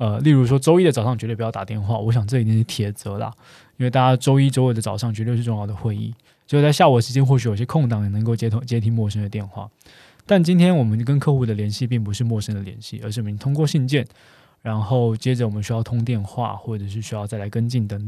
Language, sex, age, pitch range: Chinese, male, 20-39, 110-135 Hz